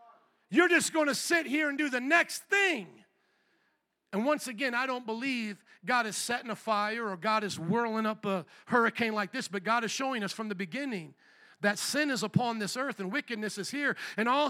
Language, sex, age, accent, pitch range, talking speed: English, male, 50-69, American, 210-295 Hz, 210 wpm